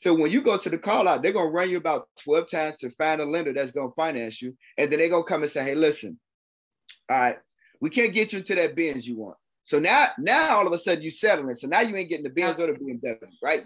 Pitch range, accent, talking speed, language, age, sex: 145-200 Hz, American, 290 wpm, English, 30-49, male